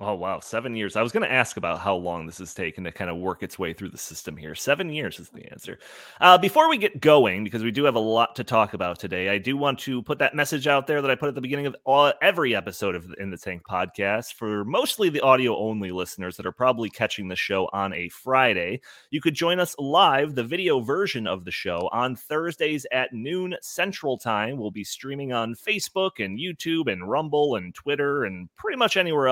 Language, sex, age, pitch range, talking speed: English, male, 30-49, 105-165 Hz, 240 wpm